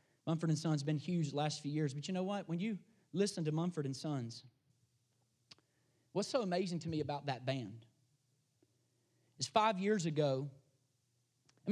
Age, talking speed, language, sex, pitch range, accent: 30-49, 175 wpm, English, male, 140-185 Hz, American